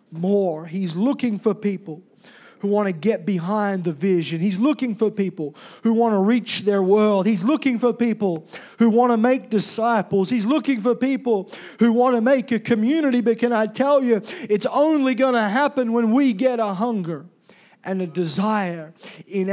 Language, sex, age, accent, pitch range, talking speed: English, male, 40-59, American, 160-225 Hz, 185 wpm